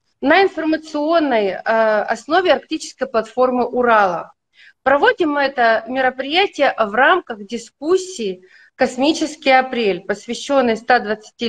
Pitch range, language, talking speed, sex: 230-285 Hz, Russian, 90 wpm, female